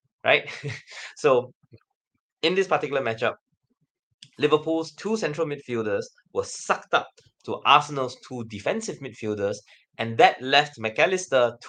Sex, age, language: male, 20-39, English